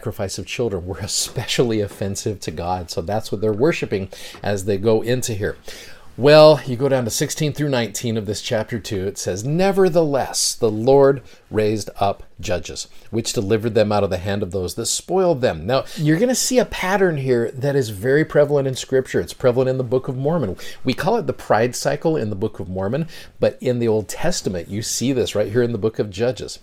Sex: male